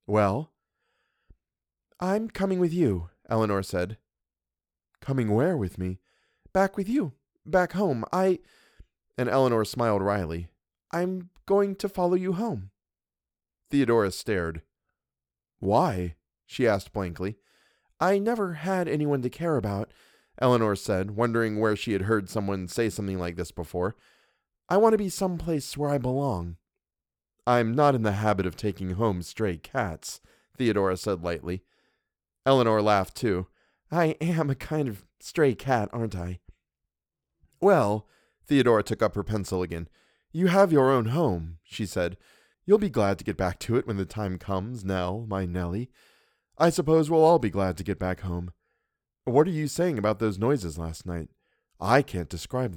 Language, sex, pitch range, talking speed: English, male, 90-150 Hz, 155 wpm